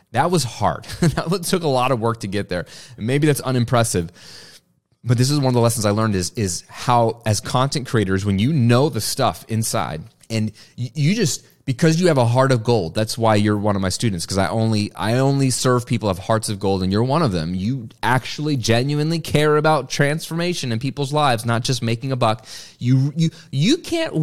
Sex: male